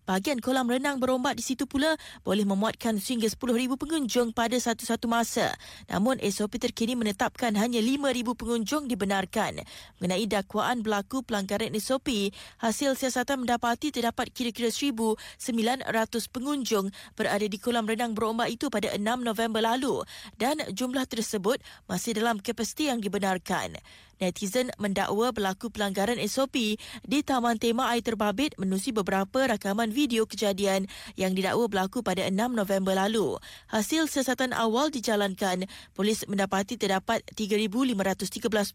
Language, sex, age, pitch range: Malay, female, 20-39, 205-245 Hz